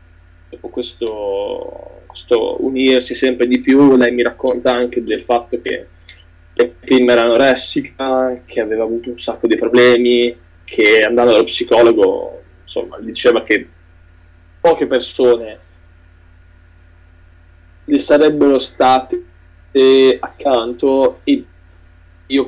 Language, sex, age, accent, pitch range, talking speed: Italian, male, 10-29, native, 85-140 Hz, 110 wpm